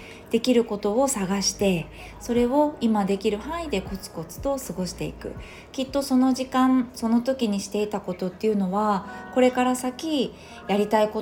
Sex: female